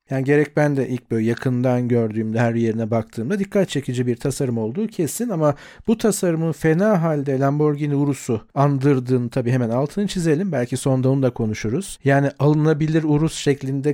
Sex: male